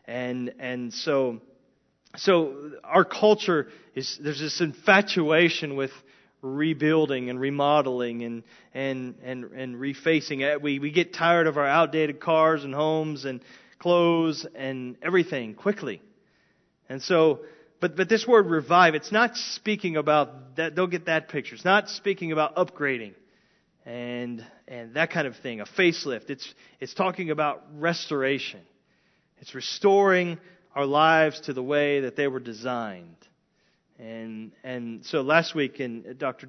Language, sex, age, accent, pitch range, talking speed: English, male, 30-49, American, 130-170 Hz, 145 wpm